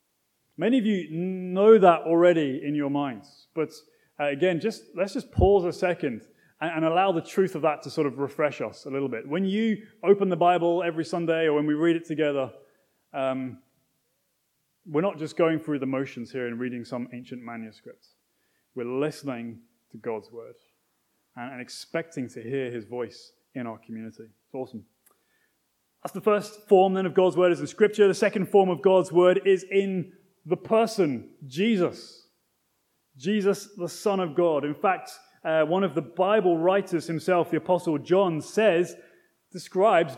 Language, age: English, 20-39